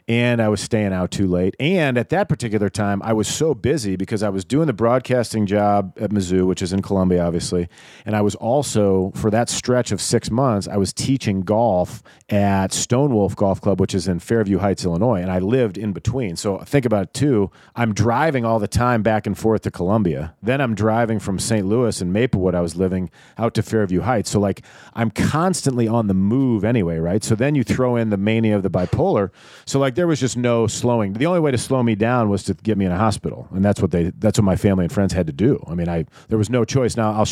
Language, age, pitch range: English, 40-59, 95-115 Hz